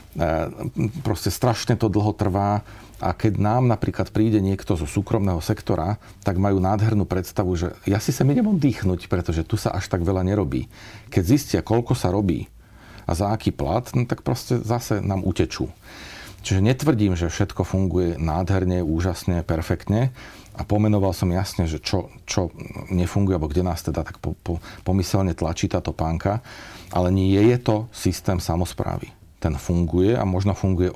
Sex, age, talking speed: male, 40-59, 165 wpm